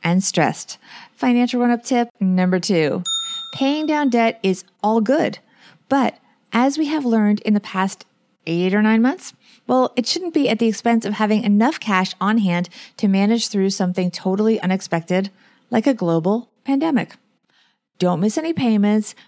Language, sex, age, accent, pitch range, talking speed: English, female, 30-49, American, 190-255 Hz, 160 wpm